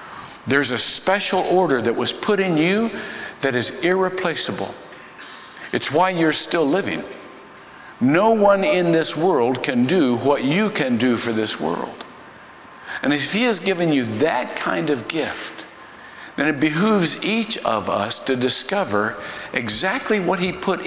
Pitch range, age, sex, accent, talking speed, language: 125-195 Hz, 60-79, male, American, 150 wpm, English